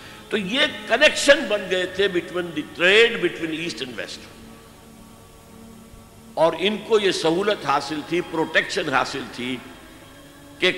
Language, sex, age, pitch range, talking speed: Urdu, male, 60-79, 155-240 Hz, 120 wpm